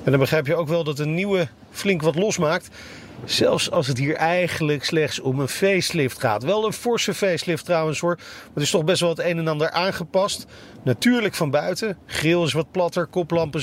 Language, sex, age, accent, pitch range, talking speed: Dutch, male, 40-59, Dutch, 145-195 Hz, 205 wpm